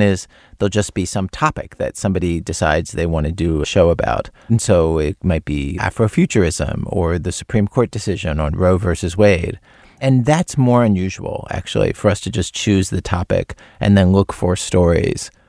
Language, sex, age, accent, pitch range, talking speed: Hebrew, male, 40-59, American, 95-110 Hz, 180 wpm